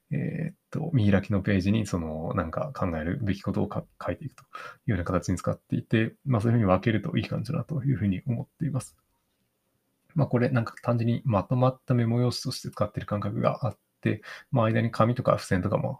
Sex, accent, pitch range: male, native, 90-120 Hz